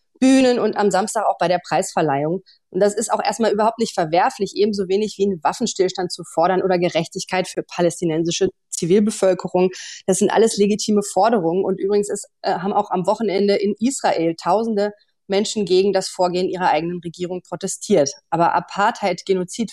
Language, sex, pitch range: German, female, 175-205 Hz